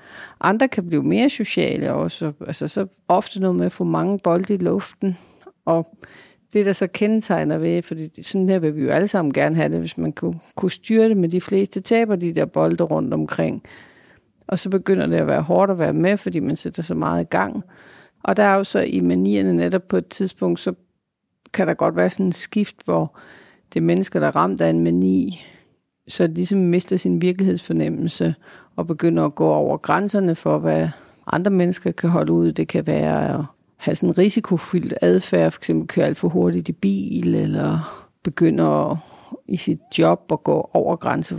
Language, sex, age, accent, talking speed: Danish, female, 50-69, native, 205 wpm